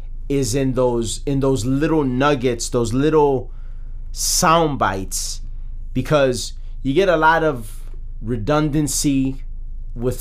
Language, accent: English, American